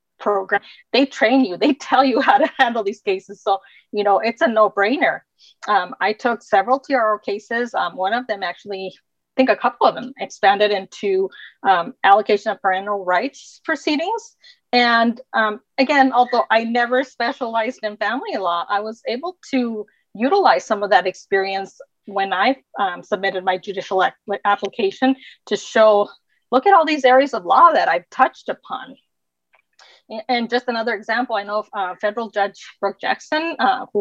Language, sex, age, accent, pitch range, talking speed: English, female, 30-49, American, 200-260 Hz, 170 wpm